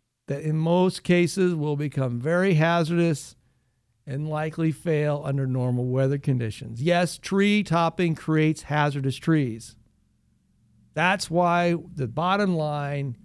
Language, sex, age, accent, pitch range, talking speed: English, male, 60-79, American, 130-190 Hz, 120 wpm